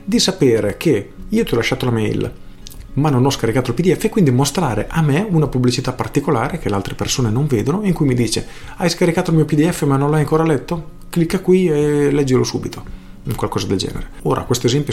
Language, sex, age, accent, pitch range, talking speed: Italian, male, 40-59, native, 105-155 Hz, 215 wpm